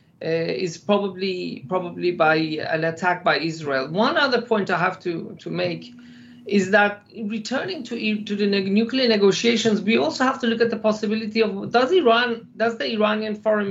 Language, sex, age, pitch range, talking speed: English, male, 50-69, 185-230 Hz, 180 wpm